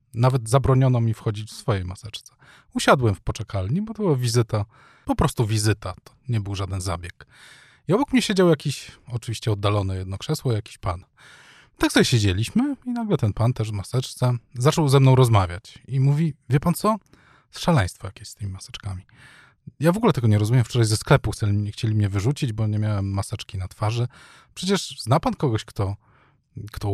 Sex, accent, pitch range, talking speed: male, native, 105-135 Hz, 180 wpm